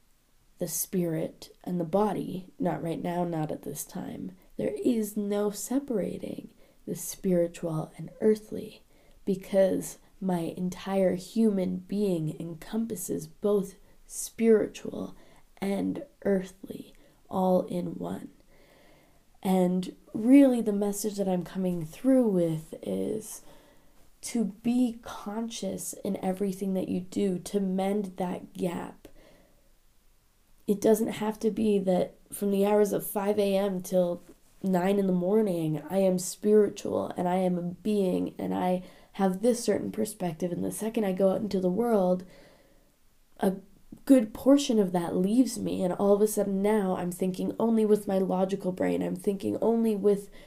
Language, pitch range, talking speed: English, 180-210 Hz, 140 wpm